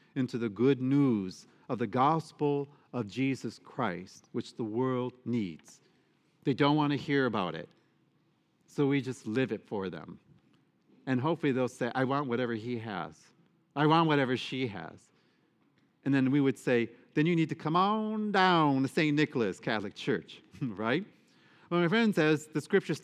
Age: 50-69